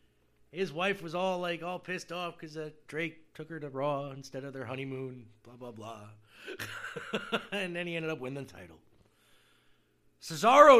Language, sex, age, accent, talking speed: English, male, 30-49, American, 170 wpm